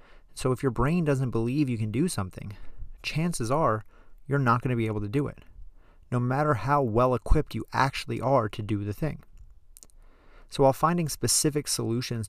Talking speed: 180 wpm